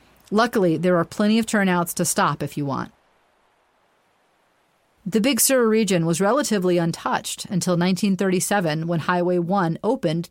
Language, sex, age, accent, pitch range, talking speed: English, female, 40-59, American, 165-210 Hz, 140 wpm